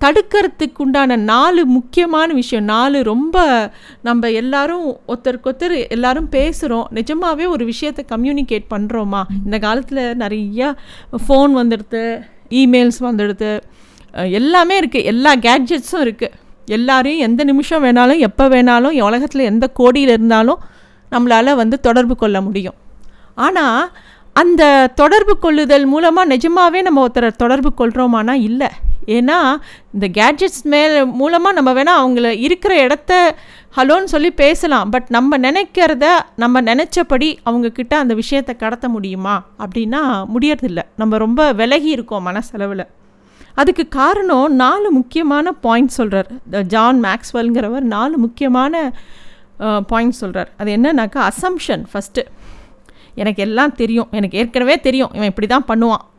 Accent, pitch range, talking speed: native, 230-290 Hz, 105 wpm